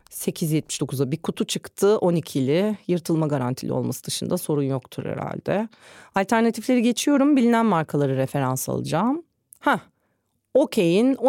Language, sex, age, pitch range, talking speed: Turkish, female, 40-59, 150-240 Hz, 105 wpm